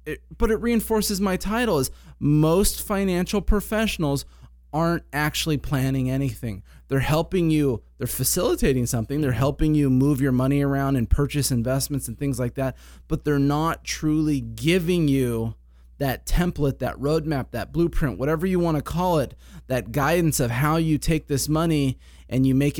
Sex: male